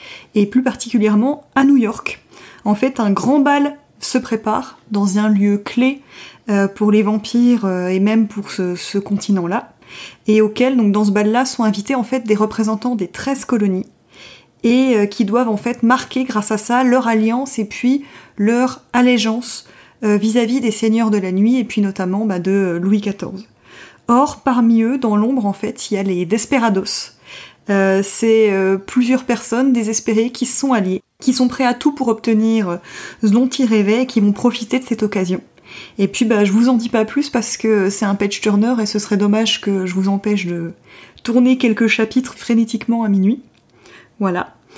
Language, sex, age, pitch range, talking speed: French, female, 20-39, 205-250 Hz, 185 wpm